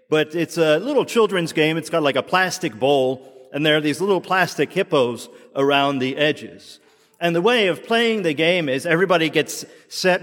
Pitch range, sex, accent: 145-195 Hz, male, American